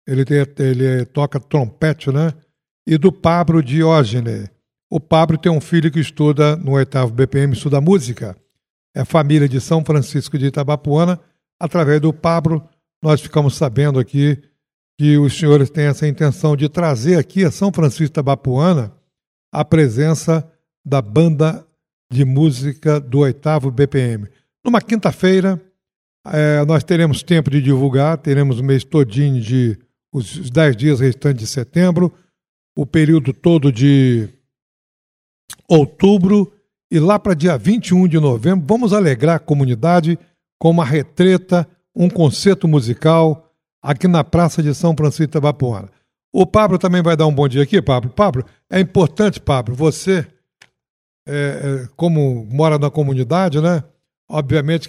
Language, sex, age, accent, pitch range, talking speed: Portuguese, male, 60-79, Brazilian, 140-170 Hz, 140 wpm